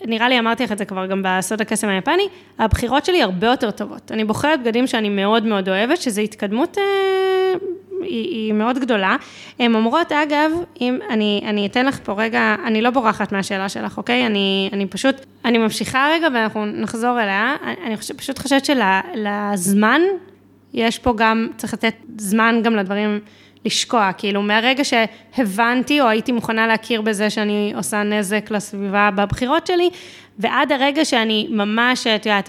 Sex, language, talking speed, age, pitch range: female, Hebrew, 170 wpm, 20-39, 215-270 Hz